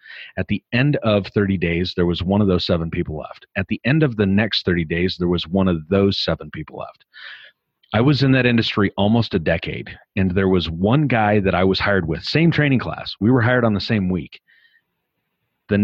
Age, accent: 40-59, American